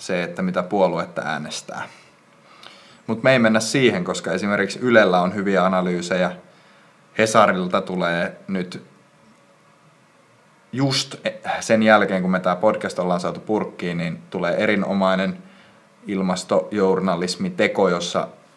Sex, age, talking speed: male, 30-49, 110 wpm